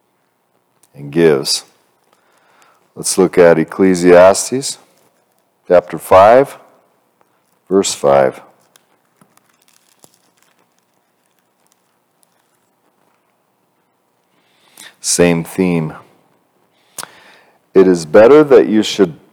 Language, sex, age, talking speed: English, male, 50-69, 55 wpm